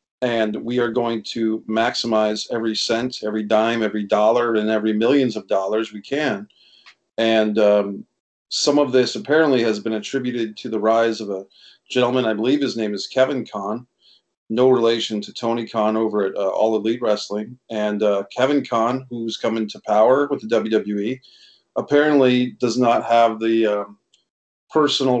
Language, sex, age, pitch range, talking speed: English, male, 40-59, 110-125 Hz, 165 wpm